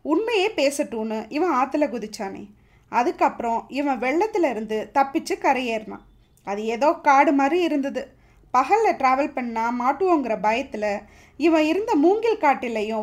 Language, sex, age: Tamil, female, 20-39